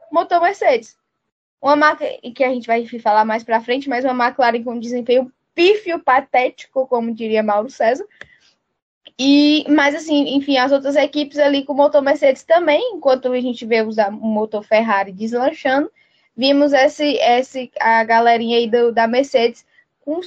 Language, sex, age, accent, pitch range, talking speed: Portuguese, female, 10-29, Brazilian, 240-305 Hz, 165 wpm